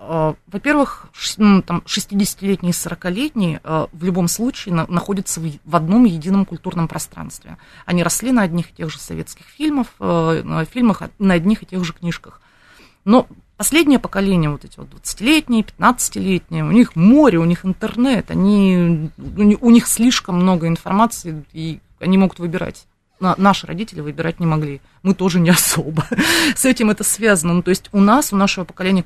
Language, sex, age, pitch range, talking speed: Russian, female, 30-49, 165-210 Hz, 155 wpm